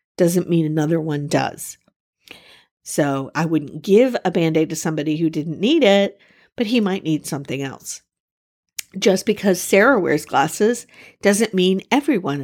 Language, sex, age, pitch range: English, female, 50-69, 155-210 Hz